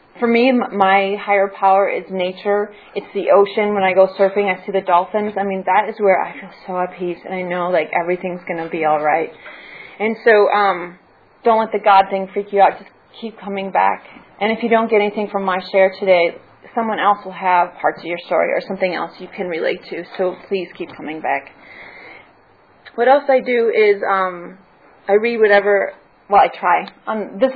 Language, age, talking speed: English, 30-49, 210 wpm